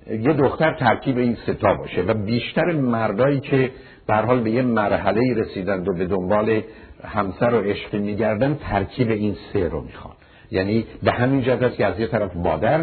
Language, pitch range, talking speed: Persian, 100-150 Hz, 170 wpm